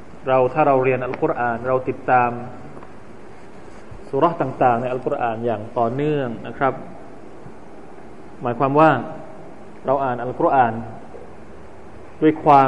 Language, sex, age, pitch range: Thai, male, 20-39, 120-155 Hz